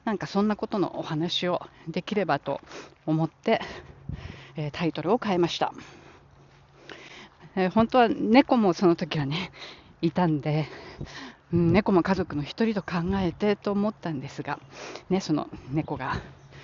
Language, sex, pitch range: Japanese, female, 150-180 Hz